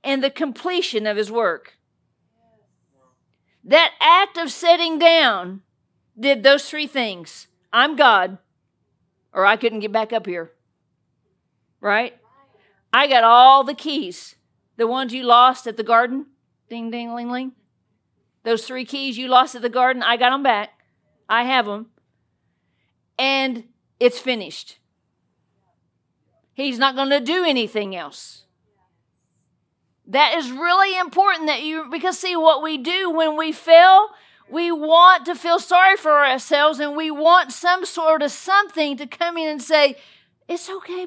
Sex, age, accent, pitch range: female, 50-69, American, 250-345 Hz